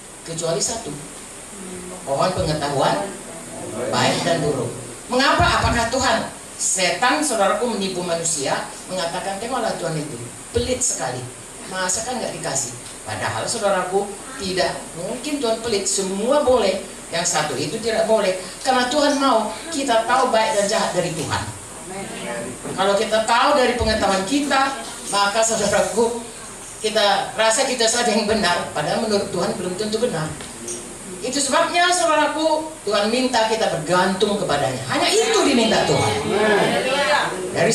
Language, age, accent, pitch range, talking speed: English, 40-59, Indonesian, 190-250 Hz, 125 wpm